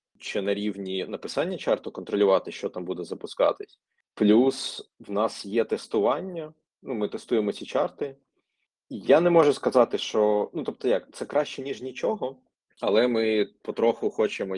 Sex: male